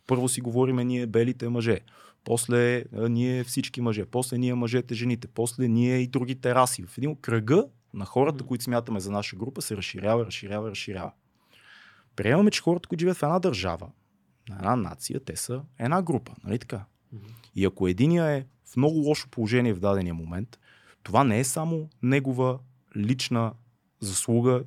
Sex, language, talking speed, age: male, Bulgarian, 165 wpm, 30-49